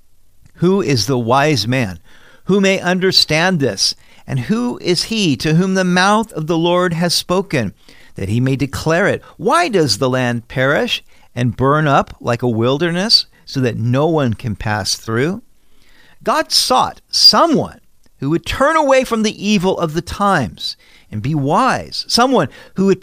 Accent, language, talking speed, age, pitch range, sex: American, English, 165 wpm, 50-69, 120-195 Hz, male